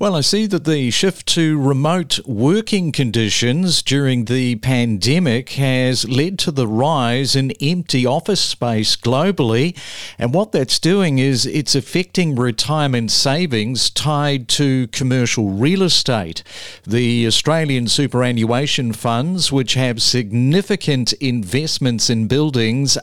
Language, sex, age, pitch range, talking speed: English, male, 50-69, 120-155 Hz, 120 wpm